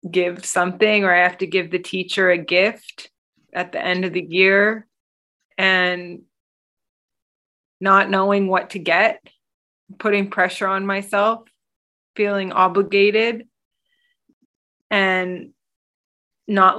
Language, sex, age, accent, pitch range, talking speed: English, female, 20-39, American, 180-205 Hz, 110 wpm